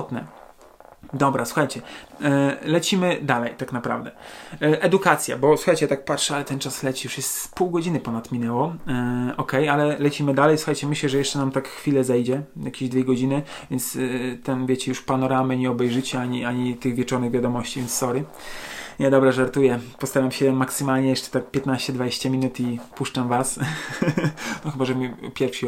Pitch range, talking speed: 130-170 Hz, 165 wpm